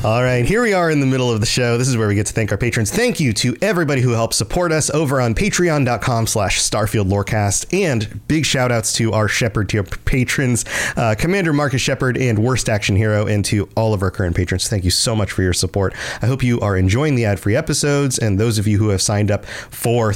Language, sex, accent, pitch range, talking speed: English, male, American, 105-140 Hz, 240 wpm